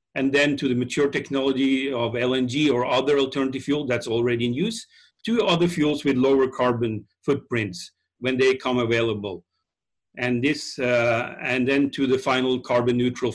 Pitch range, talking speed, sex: 125-150 Hz, 165 wpm, male